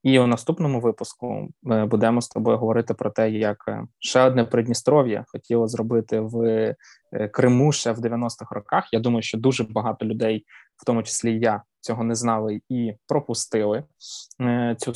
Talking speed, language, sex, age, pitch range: 160 wpm, Ukrainian, male, 20-39, 110-120 Hz